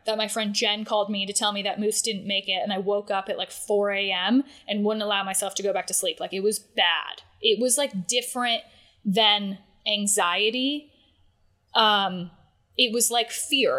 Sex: female